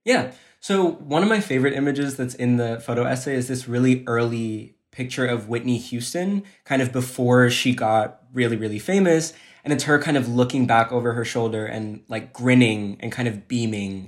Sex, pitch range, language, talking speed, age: male, 115-140 Hz, English, 190 wpm, 20-39